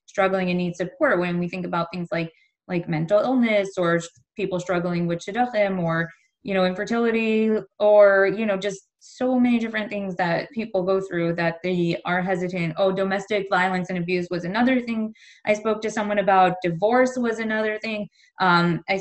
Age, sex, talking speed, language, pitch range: 20-39, female, 180 wpm, English, 175-205 Hz